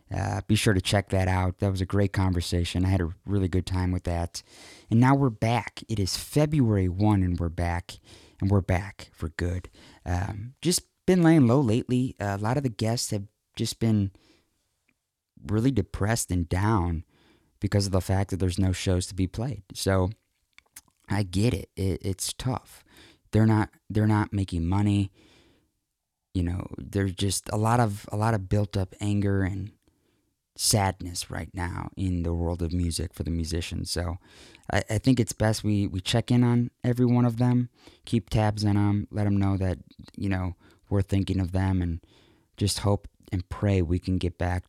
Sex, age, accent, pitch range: male, 20-39, American, 90-110 Hz